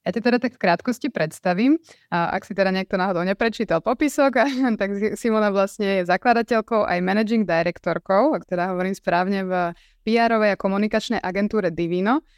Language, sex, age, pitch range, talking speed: Slovak, female, 20-39, 185-225 Hz, 165 wpm